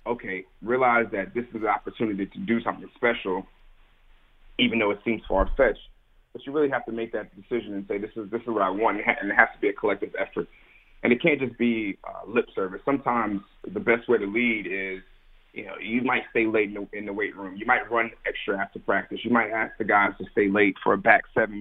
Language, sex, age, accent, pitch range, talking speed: English, male, 30-49, American, 100-120 Hz, 240 wpm